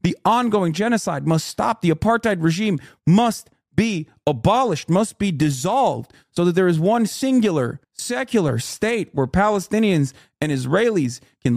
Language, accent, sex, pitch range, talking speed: English, American, male, 140-205 Hz, 140 wpm